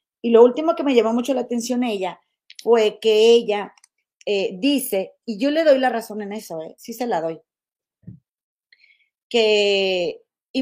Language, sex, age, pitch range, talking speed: Spanish, female, 40-59, 175-240 Hz, 170 wpm